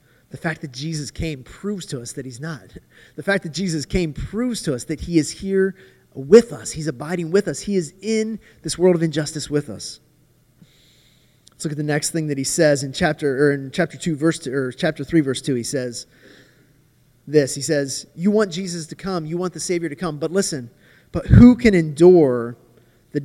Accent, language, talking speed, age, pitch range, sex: American, English, 215 wpm, 30-49, 125-165 Hz, male